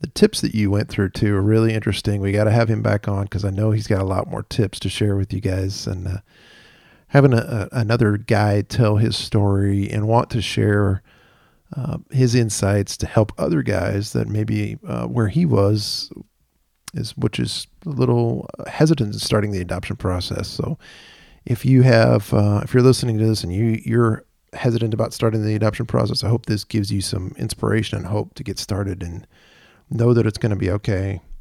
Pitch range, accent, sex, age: 100-120 Hz, American, male, 40-59